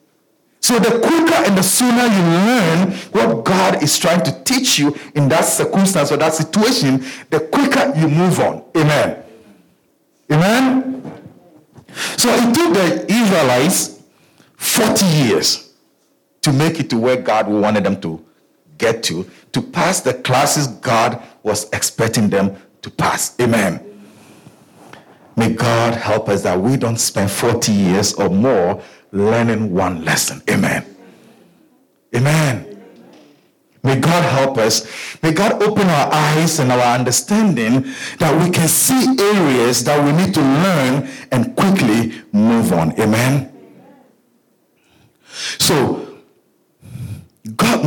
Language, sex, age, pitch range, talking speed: English, male, 50-69, 120-195 Hz, 130 wpm